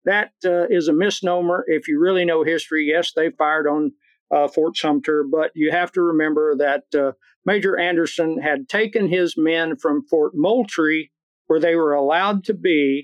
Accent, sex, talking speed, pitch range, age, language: American, male, 180 wpm, 155-205 Hz, 50-69, English